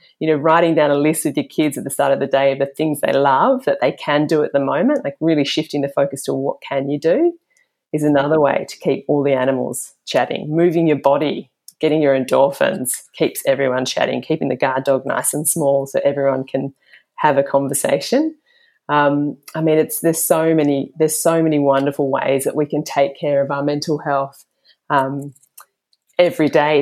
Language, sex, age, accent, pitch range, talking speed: English, female, 30-49, Australian, 140-160 Hz, 205 wpm